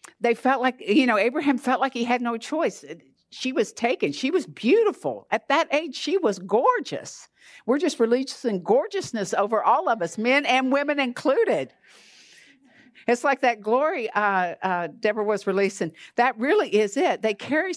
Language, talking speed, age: English, 170 wpm, 60-79